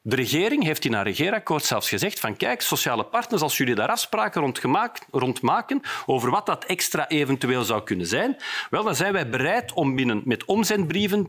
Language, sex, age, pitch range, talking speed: Dutch, male, 40-59, 120-205 Hz, 185 wpm